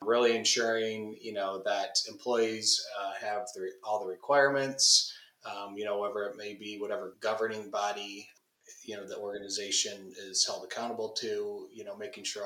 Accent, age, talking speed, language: American, 20-39, 170 wpm, English